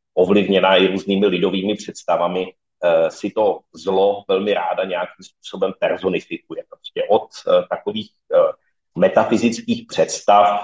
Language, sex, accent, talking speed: Czech, male, native, 120 wpm